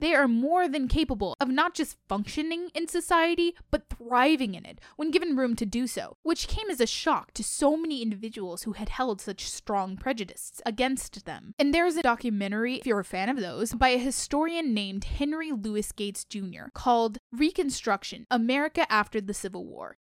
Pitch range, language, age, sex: 210-300 Hz, English, 10-29, female